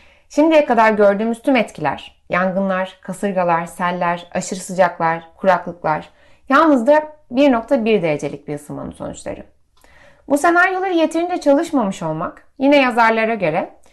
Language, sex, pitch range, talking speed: Turkish, female, 195-295 Hz, 110 wpm